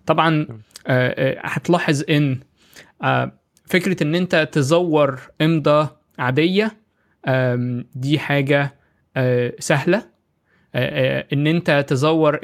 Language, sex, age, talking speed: Arabic, male, 20-39, 70 wpm